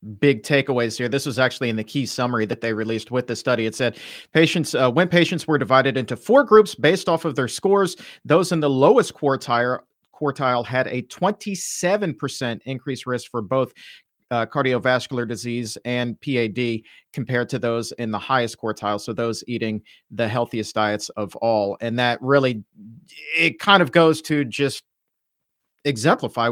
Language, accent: English, American